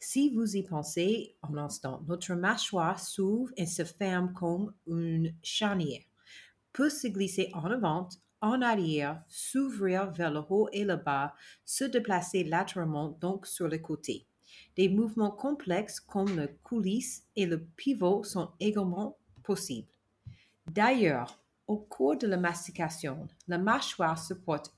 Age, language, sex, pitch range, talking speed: 40-59, French, female, 165-210 Hz, 140 wpm